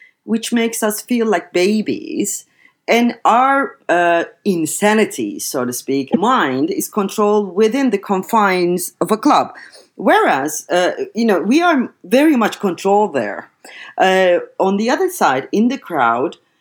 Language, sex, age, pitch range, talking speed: English, female, 40-59, 150-220 Hz, 145 wpm